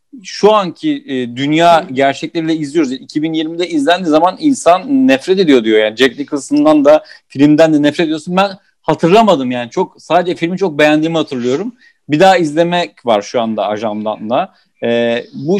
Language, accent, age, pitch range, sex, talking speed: Turkish, native, 50-69, 125-175 Hz, male, 140 wpm